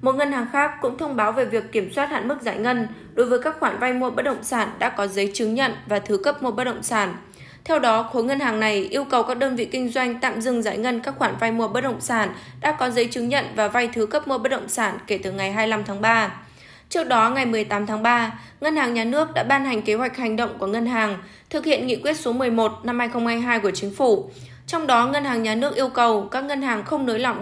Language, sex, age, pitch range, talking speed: Vietnamese, female, 20-39, 220-265 Hz, 270 wpm